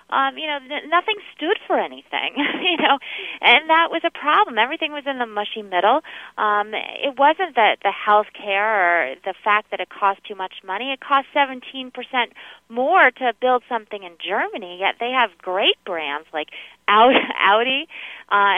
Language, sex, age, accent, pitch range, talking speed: English, female, 30-49, American, 190-260 Hz, 180 wpm